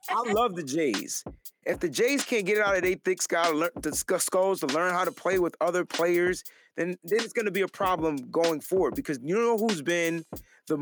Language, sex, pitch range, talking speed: English, male, 180-245 Hz, 235 wpm